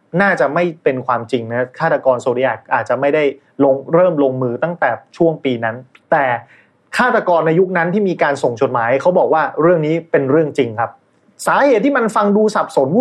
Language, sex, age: Thai, male, 30-49